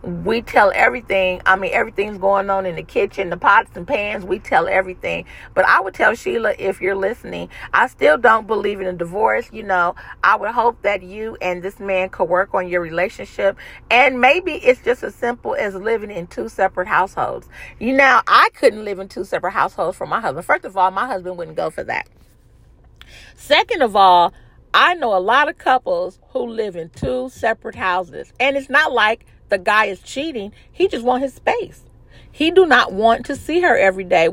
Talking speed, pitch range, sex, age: 205 wpm, 195-270 Hz, female, 40-59